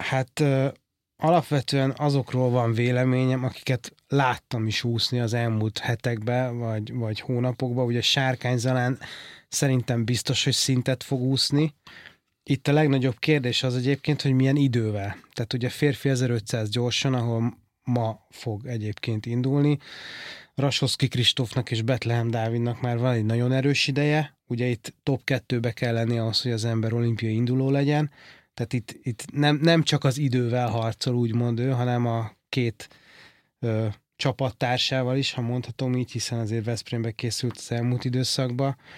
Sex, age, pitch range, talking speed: male, 30-49, 120-135 Hz, 145 wpm